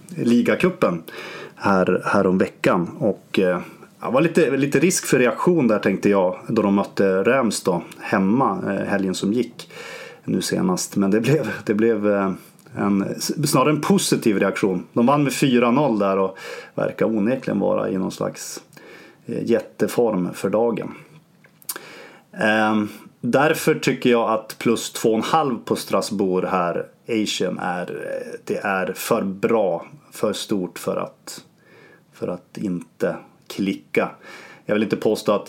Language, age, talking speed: English, 30-49, 135 wpm